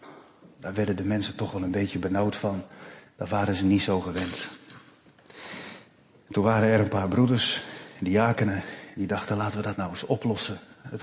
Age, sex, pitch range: 40-59, male, 100-120 Hz